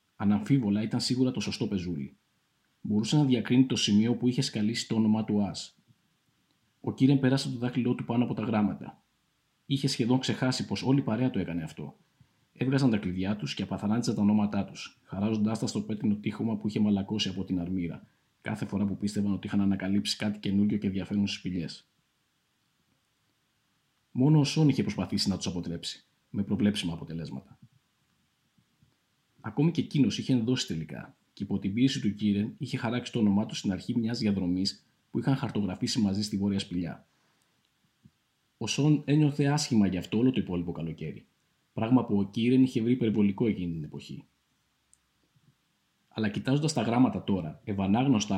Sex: male